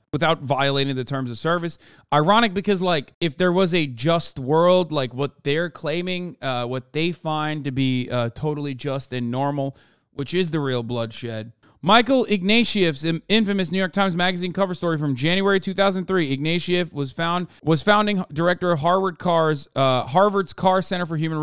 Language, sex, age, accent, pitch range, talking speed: English, male, 30-49, American, 140-185 Hz, 175 wpm